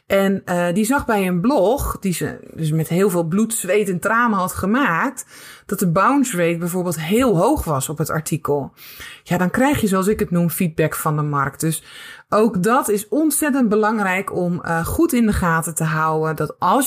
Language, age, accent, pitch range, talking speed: Dutch, 20-39, Dutch, 165-215 Hz, 205 wpm